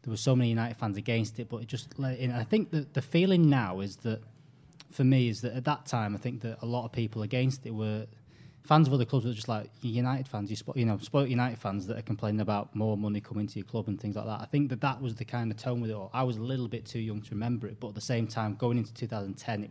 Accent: British